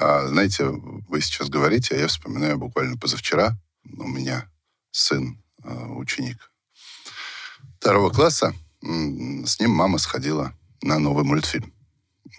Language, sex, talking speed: Russian, male, 110 wpm